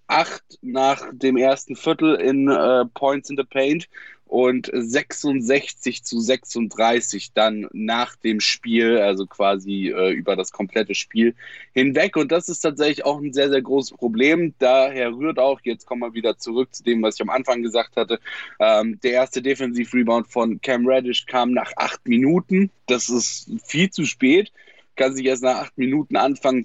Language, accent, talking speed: German, German, 175 wpm